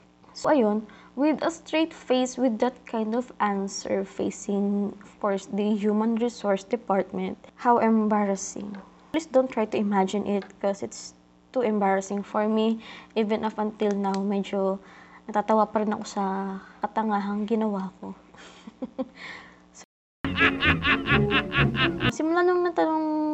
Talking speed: 125 wpm